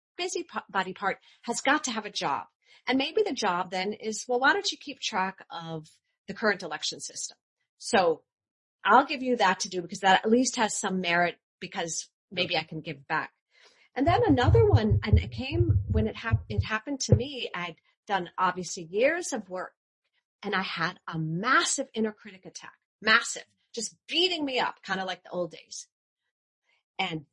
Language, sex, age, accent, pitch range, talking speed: English, female, 40-59, American, 170-280 Hz, 190 wpm